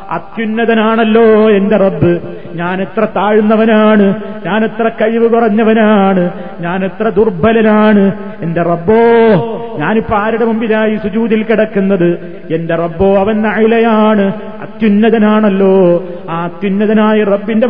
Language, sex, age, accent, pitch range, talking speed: Malayalam, male, 30-49, native, 195-220 Hz, 90 wpm